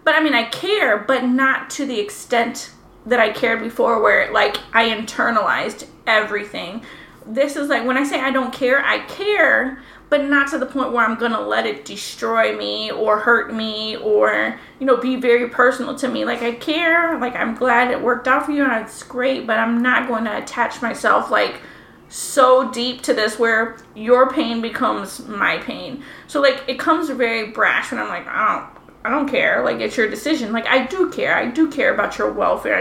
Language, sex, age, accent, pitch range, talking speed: English, female, 20-39, American, 230-270 Hz, 205 wpm